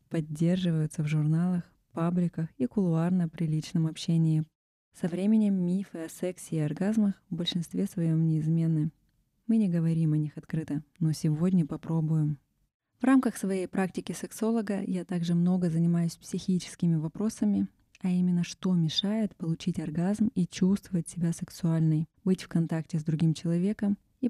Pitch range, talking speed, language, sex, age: 155-190 Hz, 140 wpm, Russian, female, 20-39